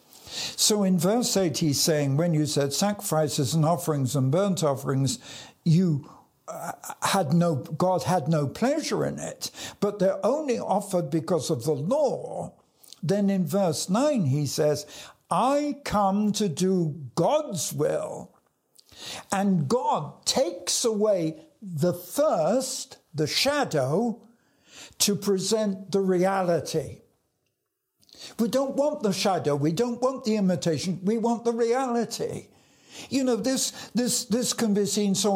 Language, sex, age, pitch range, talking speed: English, male, 60-79, 165-220 Hz, 135 wpm